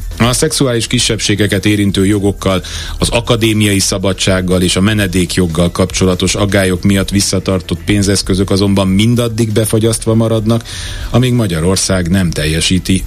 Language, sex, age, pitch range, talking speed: Hungarian, male, 30-49, 85-100 Hz, 110 wpm